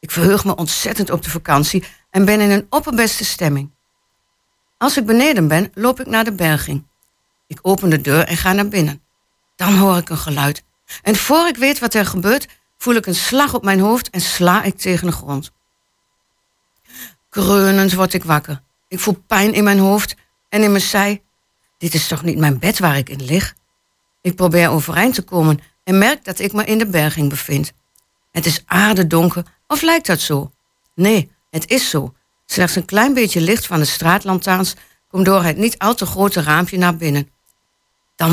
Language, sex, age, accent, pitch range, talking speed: Dutch, female, 60-79, Dutch, 160-210 Hz, 195 wpm